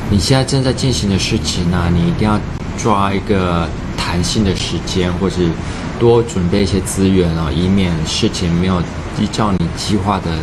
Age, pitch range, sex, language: 20-39, 85-105 Hz, male, Chinese